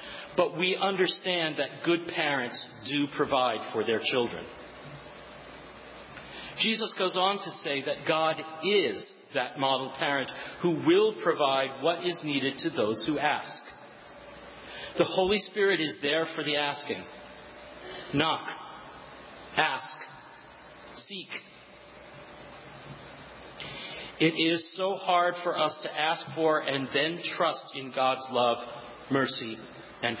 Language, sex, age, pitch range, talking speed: English, male, 40-59, 135-170 Hz, 120 wpm